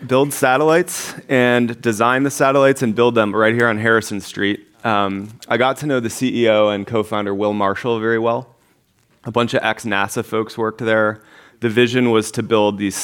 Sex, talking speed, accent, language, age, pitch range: male, 185 wpm, American, English, 30-49, 100-120 Hz